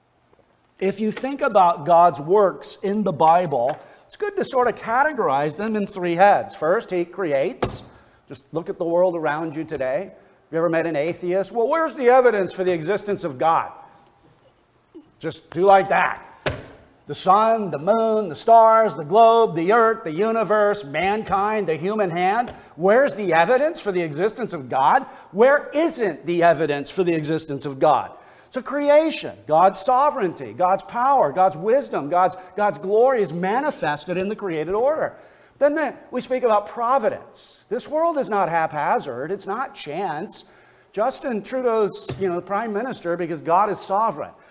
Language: English